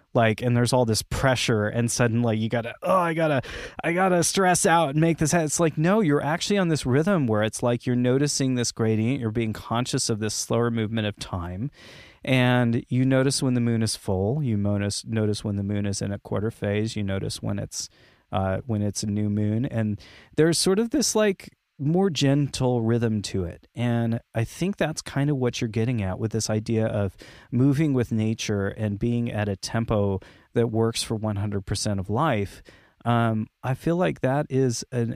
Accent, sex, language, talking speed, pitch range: American, male, English, 210 wpm, 105-135 Hz